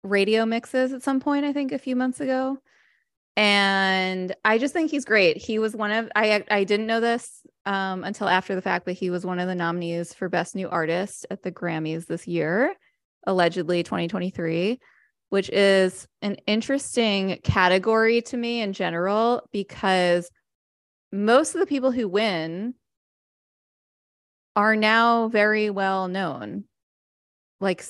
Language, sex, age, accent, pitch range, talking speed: English, female, 20-39, American, 185-230 Hz, 155 wpm